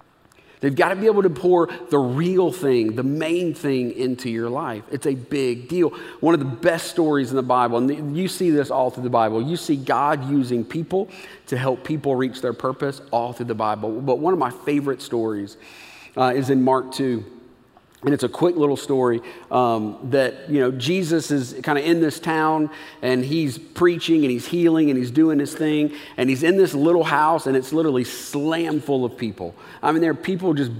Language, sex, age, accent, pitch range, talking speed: English, male, 40-59, American, 130-165 Hz, 210 wpm